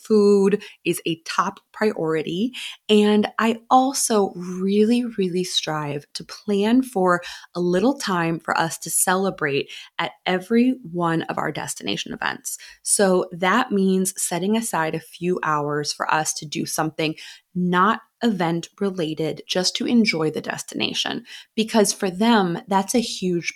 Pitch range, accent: 165-210 Hz, American